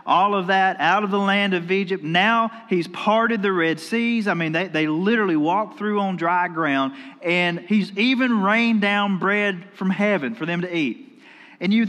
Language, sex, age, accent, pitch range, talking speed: English, male, 40-59, American, 170-220 Hz, 195 wpm